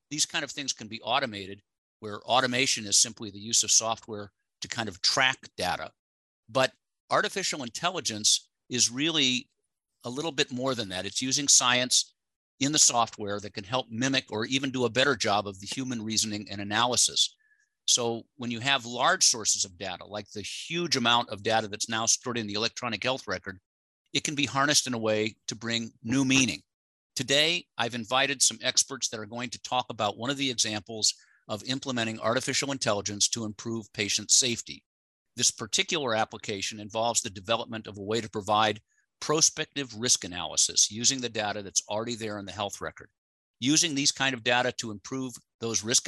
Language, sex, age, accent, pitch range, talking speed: English, male, 50-69, American, 105-130 Hz, 185 wpm